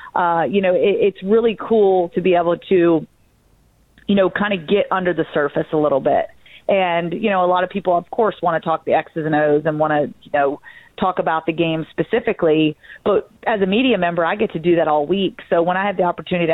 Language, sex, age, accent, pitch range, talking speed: English, female, 30-49, American, 160-195 Hz, 240 wpm